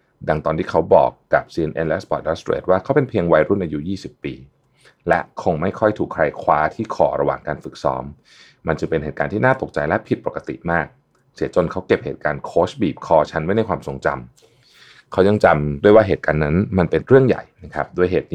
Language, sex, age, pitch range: Thai, male, 30-49, 75-110 Hz